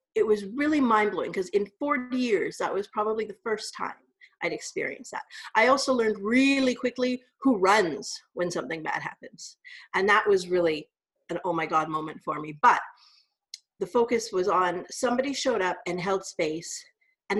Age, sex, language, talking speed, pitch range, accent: 40-59, female, English, 175 wpm, 180-295 Hz, American